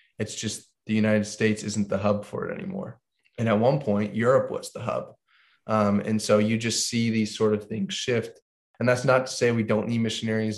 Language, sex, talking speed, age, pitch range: English, male, 220 wpm, 20-39, 105-115 Hz